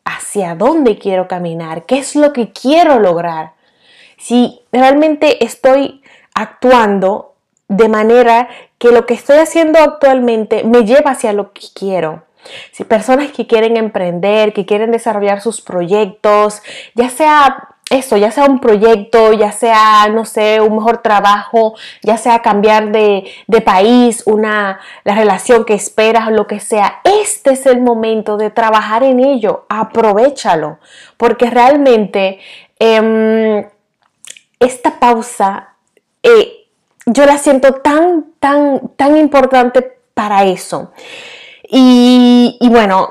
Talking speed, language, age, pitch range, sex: 130 wpm, Spanish, 20-39, 210-250 Hz, female